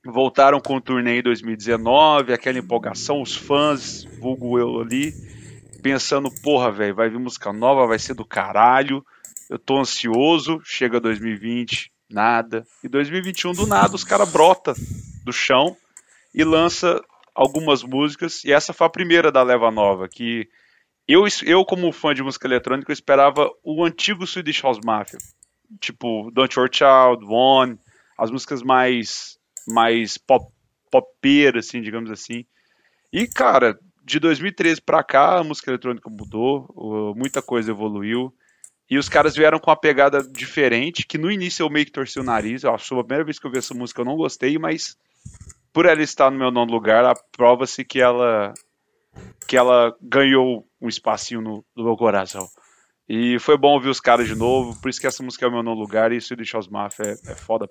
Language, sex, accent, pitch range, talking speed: Portuguese, male, Brazilian, 115-145 Hz, 180 wpm